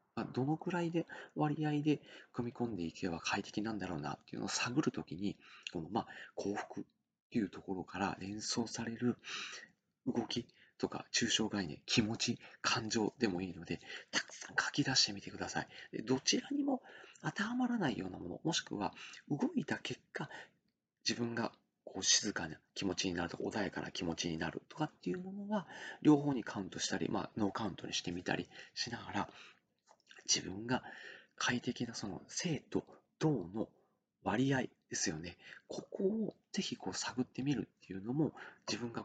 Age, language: 40-59, Japanese